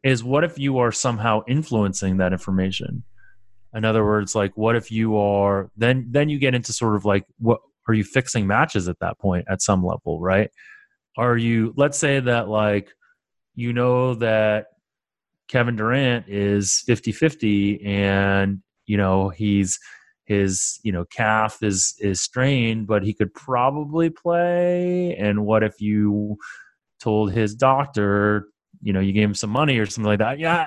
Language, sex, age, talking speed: English, male, 30-49, 165 wpm